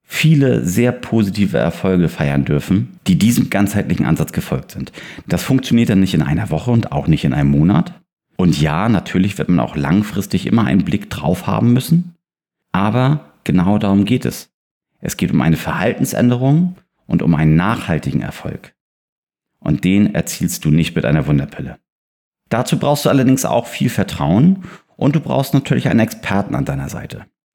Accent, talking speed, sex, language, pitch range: German, 170 wpm, male, German, 90-135 Hz